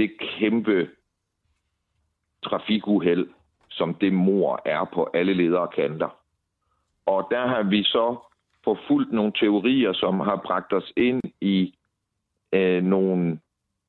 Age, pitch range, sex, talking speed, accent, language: 60-79, 85-105 Hz, male, 110 wpm, native, Danish